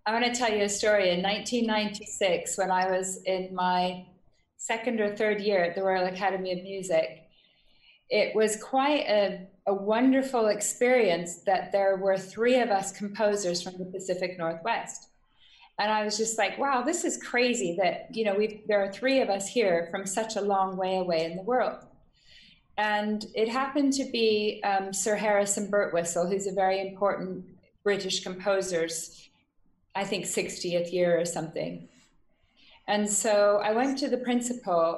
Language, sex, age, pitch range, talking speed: English, female, 30-49, 185-215 Hz, 170 wpm